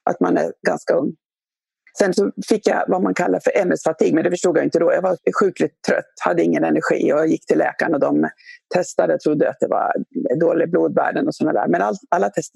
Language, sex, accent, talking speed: English, female, Swedish, 230 wpm